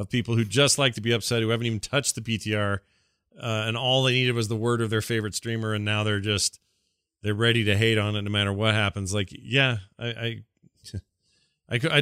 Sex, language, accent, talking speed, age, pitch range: male, English, American, 225 wpm, 40-59, 95-115 Hz